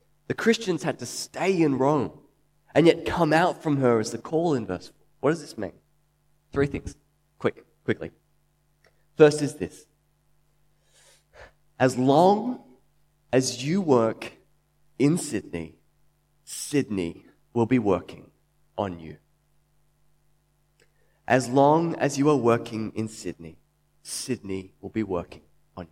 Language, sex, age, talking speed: English, male, 20-39, 125 wpm